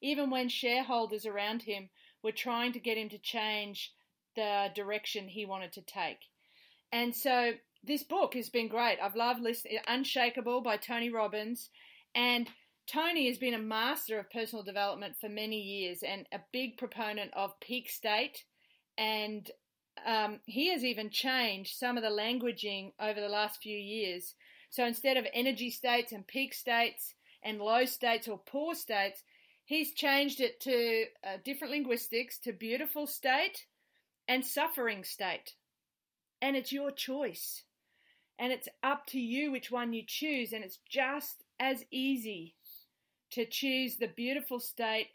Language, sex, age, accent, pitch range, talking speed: English, female, 30-49, Australian, 215-260 Hz, 155 wpm